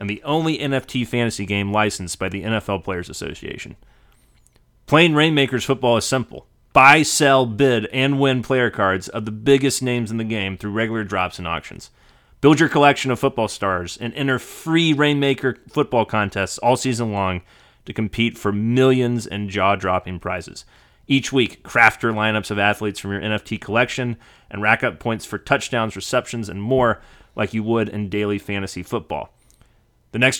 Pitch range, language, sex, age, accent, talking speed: 100-130 Hz, English, male, 30-49, American, 170 wpm